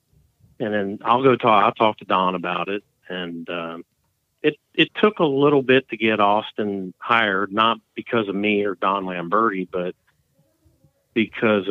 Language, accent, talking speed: English, American, 165 wpm